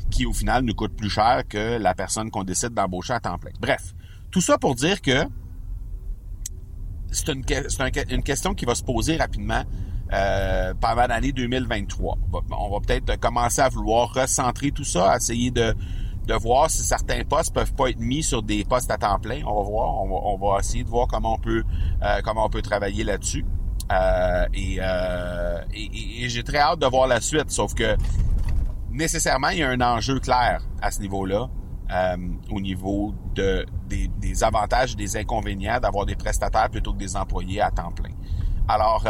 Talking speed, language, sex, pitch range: 185 wpm, French, male, 95-115 Hz